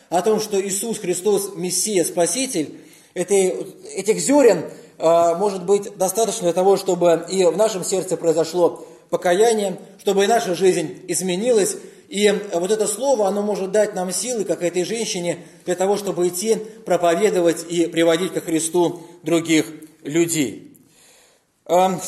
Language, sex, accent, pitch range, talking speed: Russian, male, native, 170-215 Hz, 135 wpm